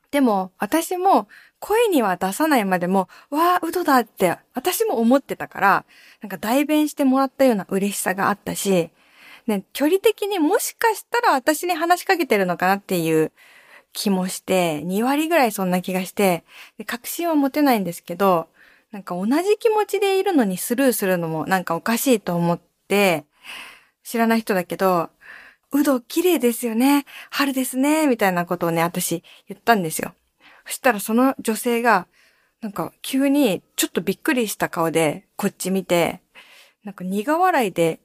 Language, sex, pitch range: Japanese, female, 185-285 Hz